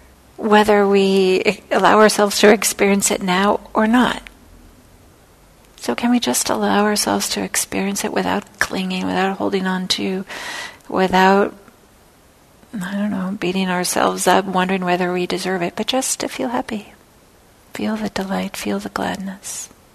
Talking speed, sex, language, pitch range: 145 wpm, female, English, 180-220 Hz